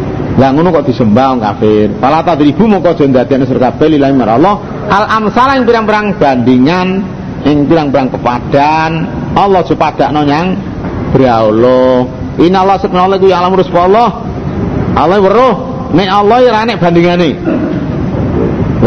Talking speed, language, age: 145 wpm, Indonesian, 50-69